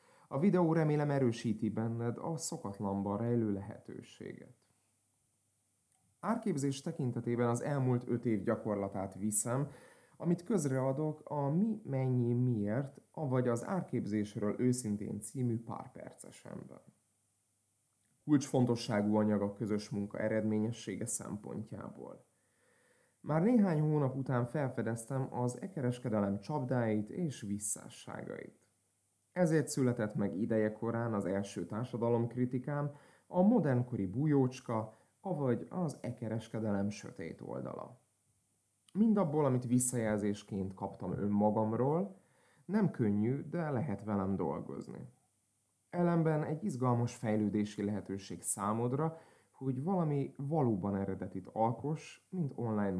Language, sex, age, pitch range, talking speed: Hungarian, male, 30-49, 105-140 Hz, 100 wpm